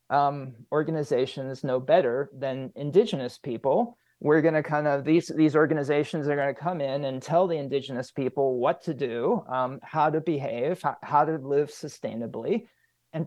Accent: American